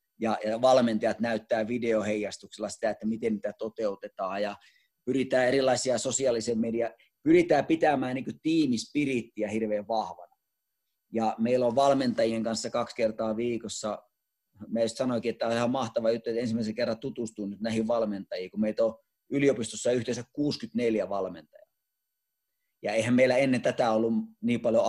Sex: male